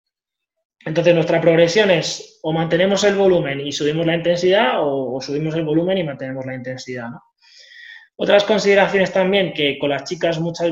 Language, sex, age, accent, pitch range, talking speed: English, male, 20-39, Spanish, 145-200 Hz, 170 wpm